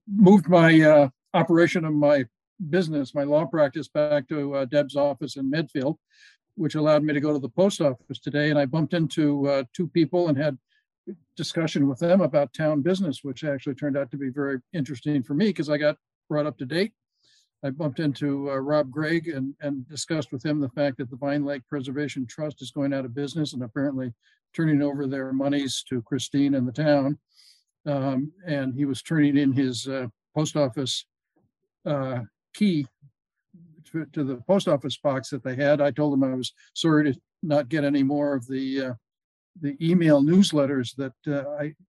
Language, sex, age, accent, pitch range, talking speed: English, male, 50-69, American, 140-155 Hz, 190 wpm